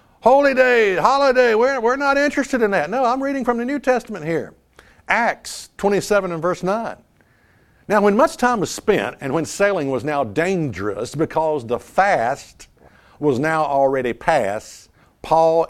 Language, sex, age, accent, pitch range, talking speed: English, male, 60-79, American, 140-200 Hz, 160 wpm